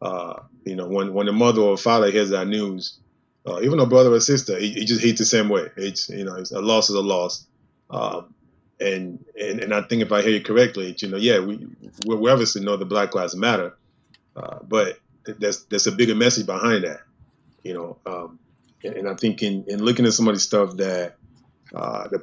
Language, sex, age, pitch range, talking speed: English, male, 20-39, 100-120 Hz, 225 wpm